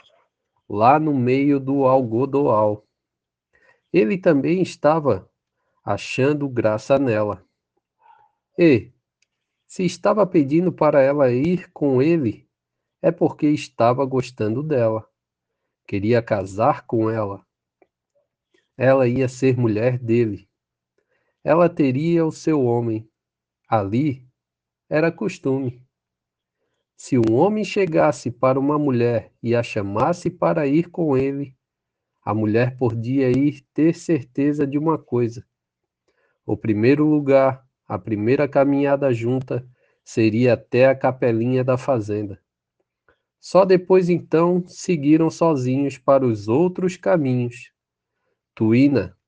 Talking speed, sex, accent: 105 wpm, male, Brazilian